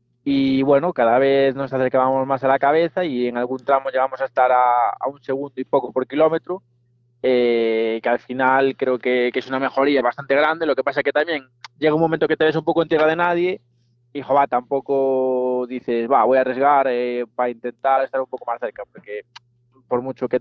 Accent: Spanish